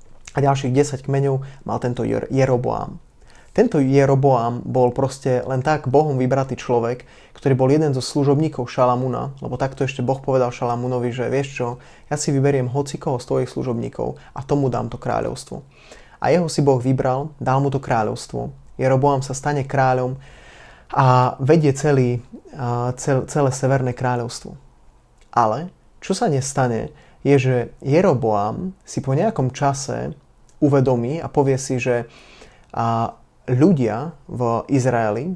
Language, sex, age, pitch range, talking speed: Slovak, male, 20-39, 125-140 Hz, 135 wpm